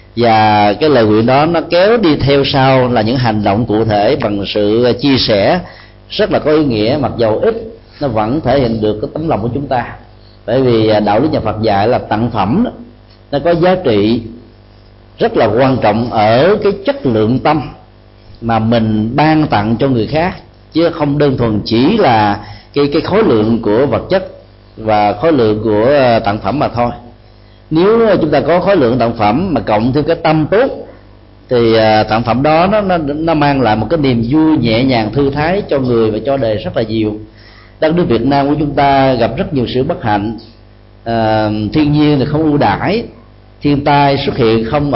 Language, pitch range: Vietnamese, 110-145 Hz